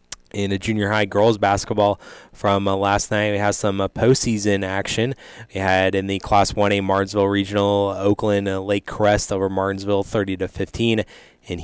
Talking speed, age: 165 wpm, 20-39